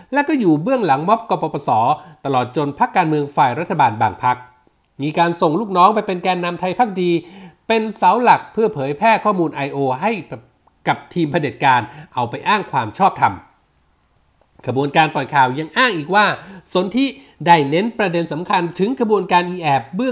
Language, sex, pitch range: Thai, male, 150-205 Hz